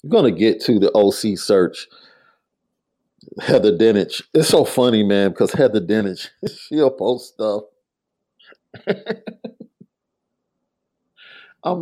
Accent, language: American, English